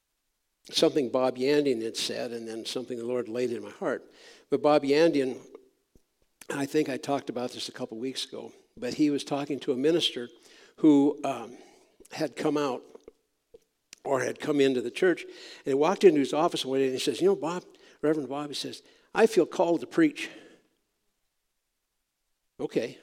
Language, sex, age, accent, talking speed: English, male, 60-79, American, 180 wpm